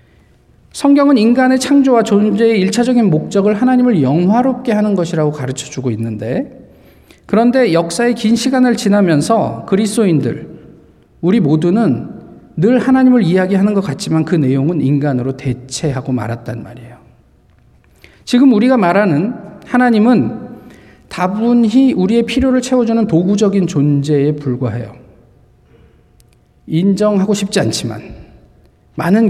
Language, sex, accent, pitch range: Korean, male, native, 170-235 Hz